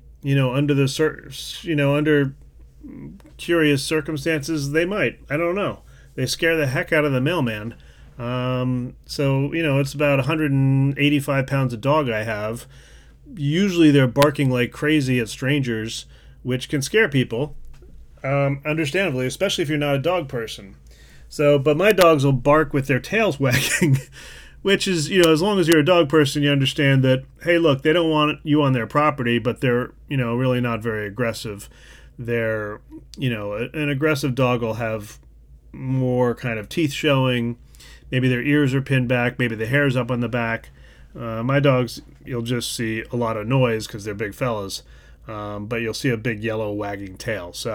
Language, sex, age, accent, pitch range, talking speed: English, male, 30-49, American, 115-150 Hz, 180 wpm